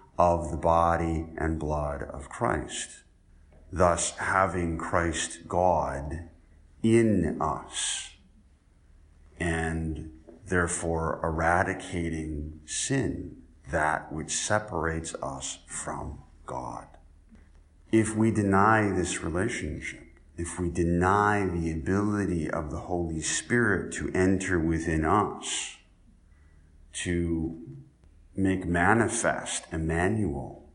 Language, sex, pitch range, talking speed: English, male, 75-95 Hz, 90 wpm